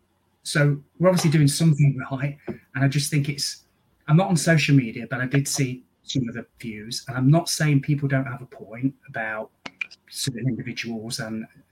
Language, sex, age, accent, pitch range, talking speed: English, male, 30-49, British, 120-145 Hz, 190 wpm